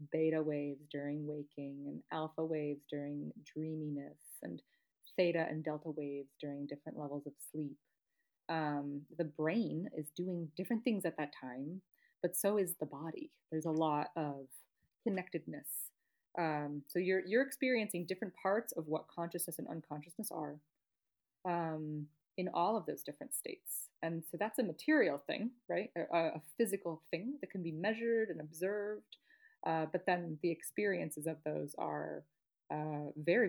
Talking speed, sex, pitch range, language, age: 155 wpm, female, 155-200 Hz, English, 20-39